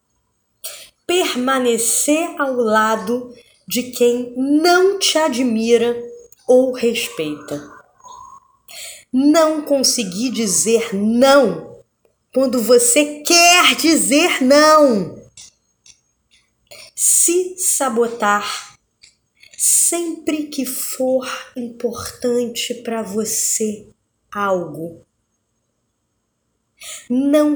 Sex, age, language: female, 20-39, Portuguese